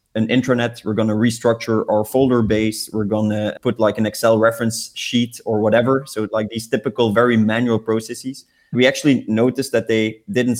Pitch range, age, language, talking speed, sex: 110-130 Hz, 20-39, English, 185 wpm, male